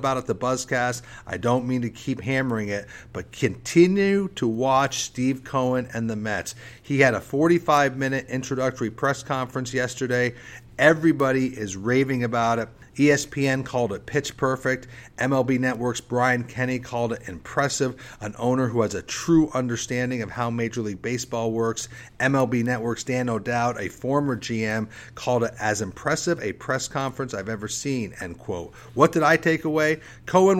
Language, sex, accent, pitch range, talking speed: English, male, American, 120-140 Hz, 165 wpm